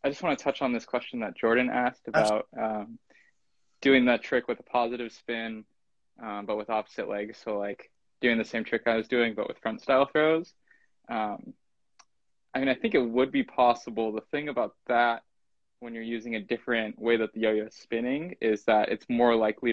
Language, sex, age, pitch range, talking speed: English, male, 20-39, 110-125 Hz, 205 wpm